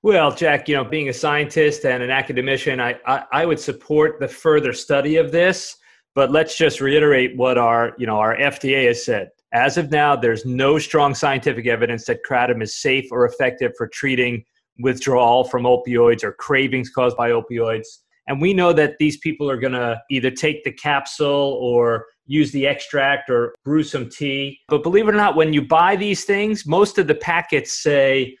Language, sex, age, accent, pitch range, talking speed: English, male, 30-49, American, 130-165 Hz, 190 wpm